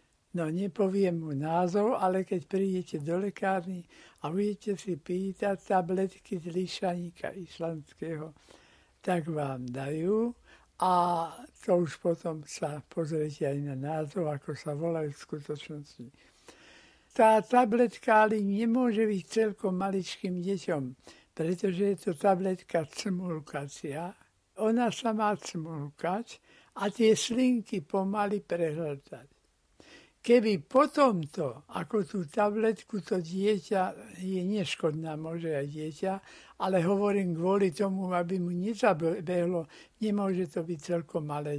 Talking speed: 115 wpm